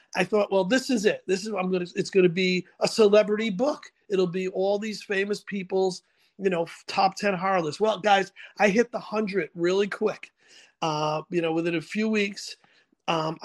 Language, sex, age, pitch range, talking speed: English, male, 40-59, 165-205 Hz, 205 wpm